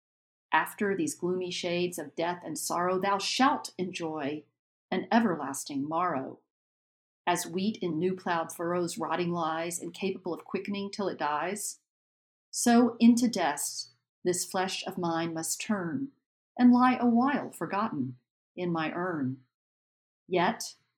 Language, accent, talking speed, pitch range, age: English, American, 125 wpm, 165-205 Hz, 40-59